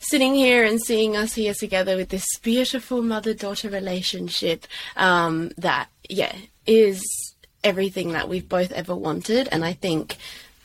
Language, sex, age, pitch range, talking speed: English, female, 20-39, 175-220 Hz, 140 wpm